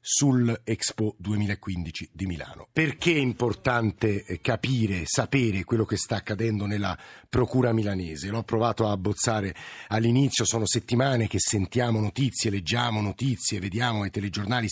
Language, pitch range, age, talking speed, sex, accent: Italian, 110-135 Hz, 50-69, 130 wpm, male, native